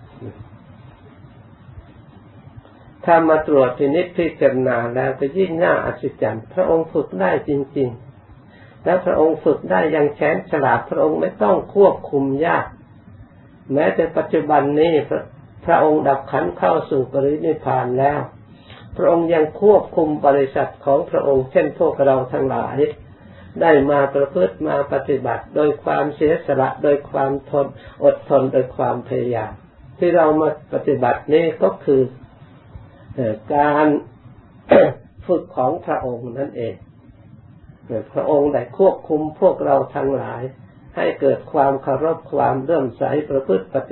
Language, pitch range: Thai, 125-150 Hz